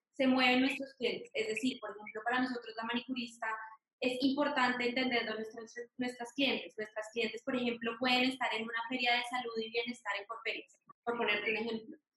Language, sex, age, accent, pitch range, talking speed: Spanish, female, 20-39, Colombian, 230-270 Hz, 180 wpm